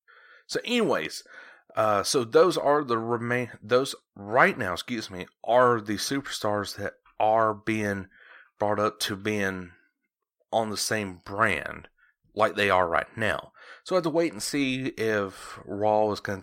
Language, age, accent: English, 30-49, American